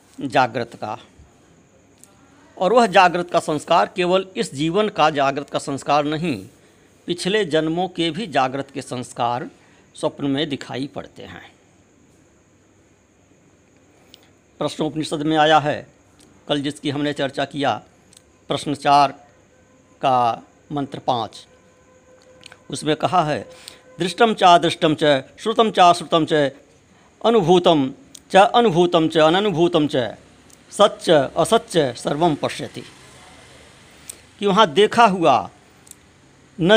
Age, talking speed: 60-79, 110 wpm